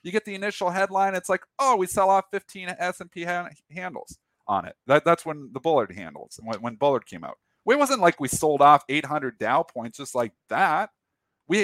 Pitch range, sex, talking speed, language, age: 135-195 Hz, male, 215 wpm, English, 40-59